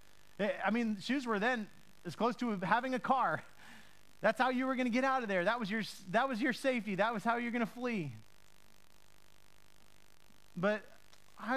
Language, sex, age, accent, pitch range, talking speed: English, male, 30-49, American, 150-230 Hz, 190 wpm